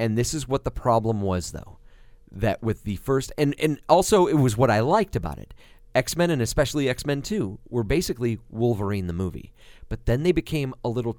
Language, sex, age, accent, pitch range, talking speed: English, male, 40-59, American, 110-160 Hz, 205 wpm